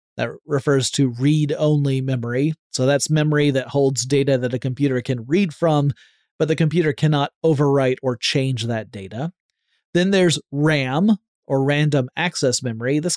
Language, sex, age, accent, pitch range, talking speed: English, male, 30-49, American, 130-160 Hz, 155 wpm